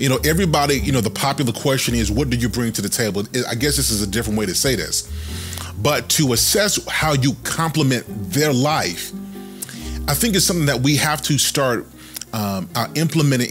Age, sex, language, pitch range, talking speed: 30-49, male, English, 115-150 Hz, 205 wpm